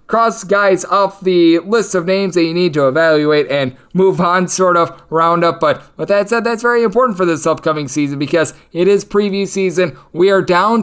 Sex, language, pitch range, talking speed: male, English, 150-185 Hz, 210 wpm